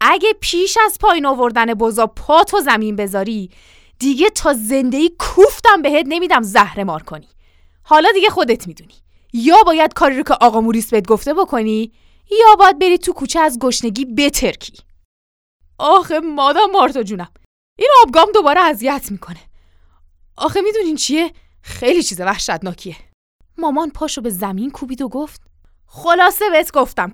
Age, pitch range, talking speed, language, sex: 20-39, 200-325 Hz, 140 wpm, Persian, female